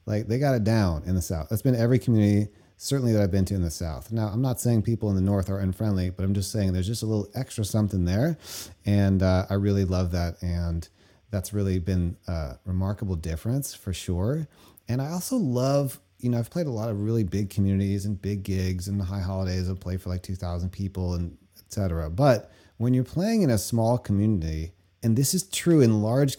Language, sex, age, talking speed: English, male, 30-49, 225 wpm